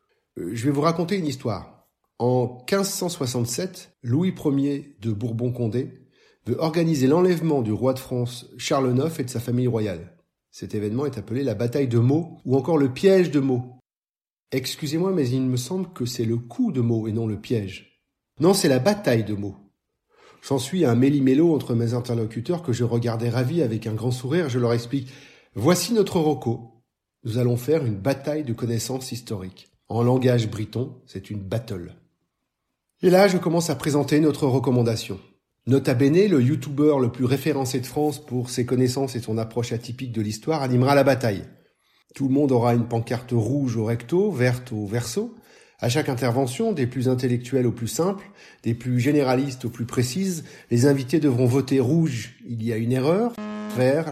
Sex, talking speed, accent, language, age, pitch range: male, 180 wpm, French, French, 40-59, 120-150 Hz